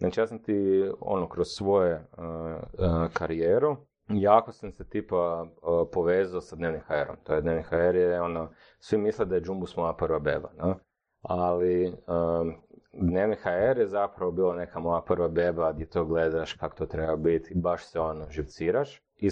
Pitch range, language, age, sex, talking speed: 85-105 Hz, Croatian, 30-49, male, 170 wpm